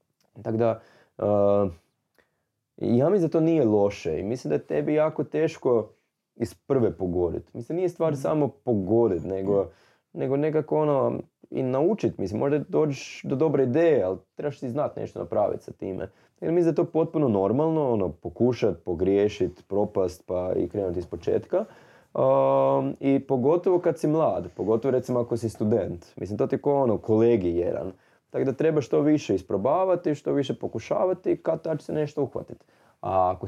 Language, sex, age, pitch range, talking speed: Croatian, male, 20-39, 110-155 Hz, 165 wpm